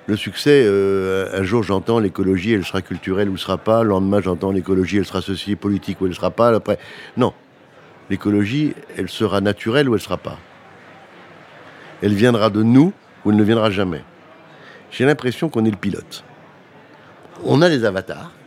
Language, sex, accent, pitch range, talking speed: French, male, French, 95-120 Hz, 180 wpm